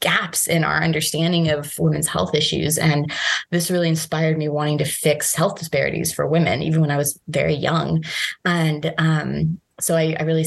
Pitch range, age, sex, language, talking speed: 150-170 Hz, 20-39, female, English, 185 wpm